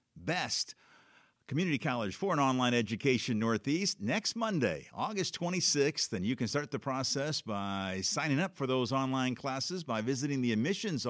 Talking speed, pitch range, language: 155 wpm, 125-165 Hz, English